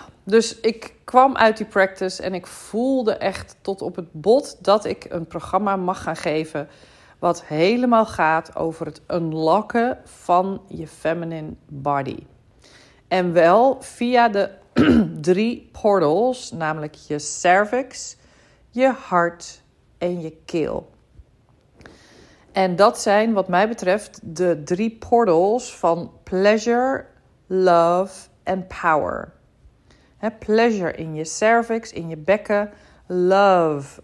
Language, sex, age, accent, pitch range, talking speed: Dutch, female, 40-59, Dutch, 165-210 Hz, 120 wpm